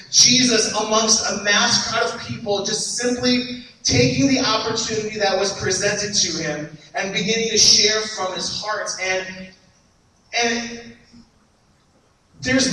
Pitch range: 185-225 Hz